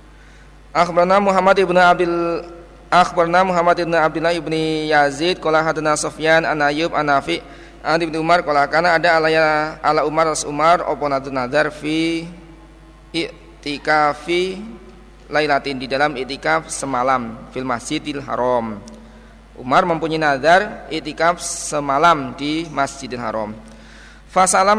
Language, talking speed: Indonesian, 125 wpm